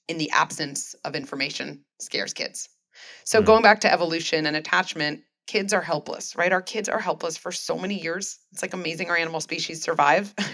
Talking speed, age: 190 wpm, 30-49